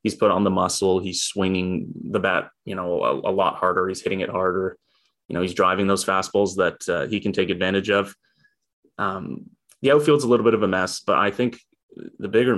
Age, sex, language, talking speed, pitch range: 20-39, male, English, 220 wpm, 95-120 Hz